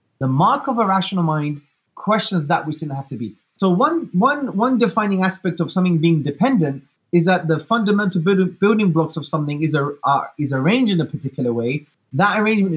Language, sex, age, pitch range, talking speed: English, male, 20-39, 155-215 Hz, 185 wpm